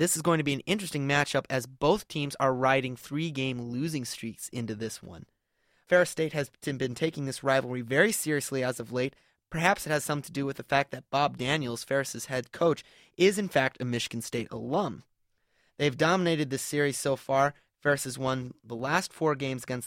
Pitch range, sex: 130-160 Hz, male